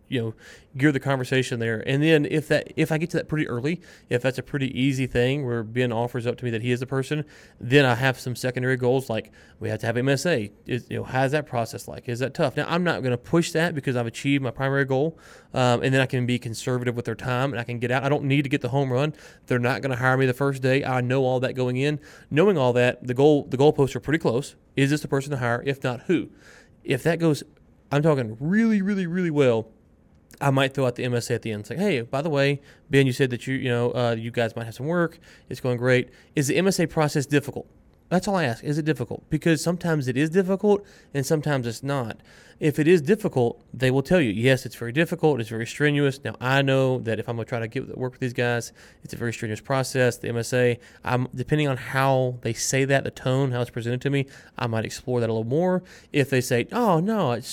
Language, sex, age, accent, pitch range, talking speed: English, male, 20-39, American, 120-150 Hz, 265 wpm